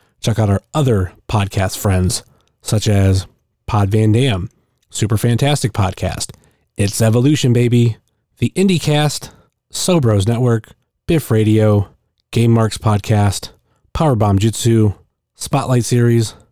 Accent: American